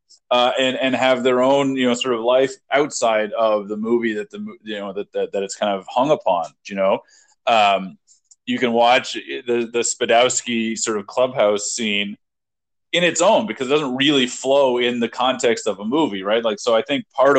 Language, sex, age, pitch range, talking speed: English, male, 30-49, 105-135 Hz, 205 wpm